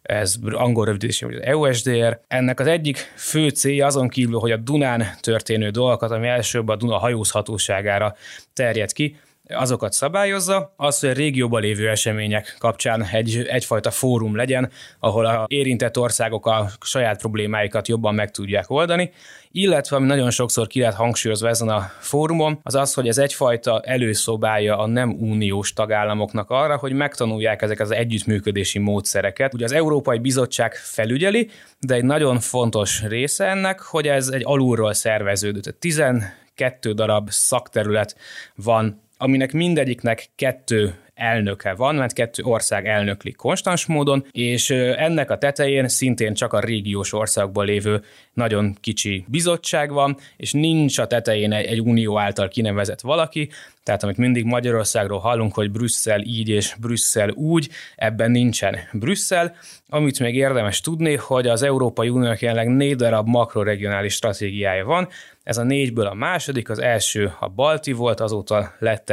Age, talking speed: 20-39, 145 wpm